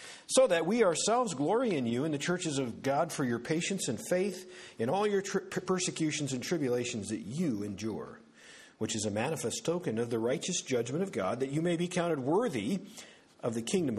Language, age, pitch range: English, 50-69, 125-175 Hz